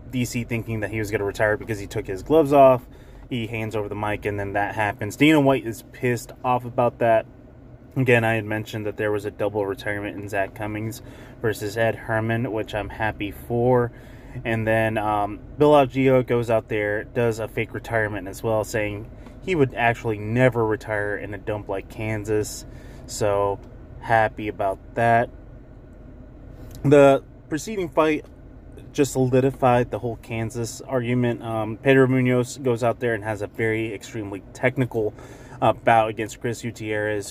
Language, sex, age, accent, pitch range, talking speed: English, male, 20-39, American, 110-125 Hz, 170 wpm